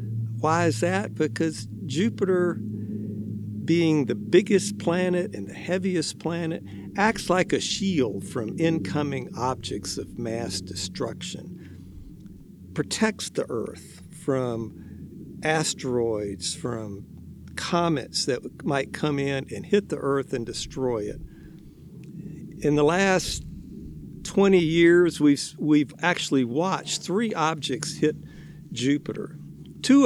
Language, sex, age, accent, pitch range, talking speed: English, male, 50-69, American, 120-175 Hz, 110 wpm